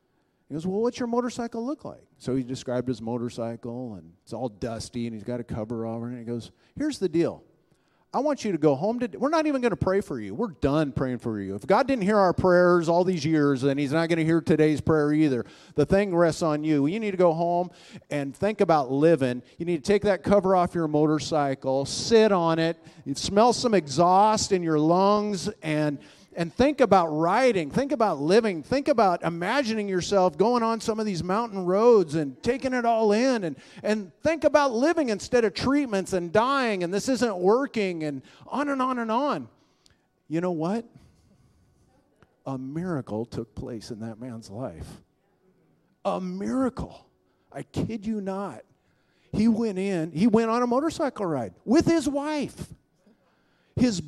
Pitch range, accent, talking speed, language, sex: 150-225 Hz, American, 195 wpm, English, male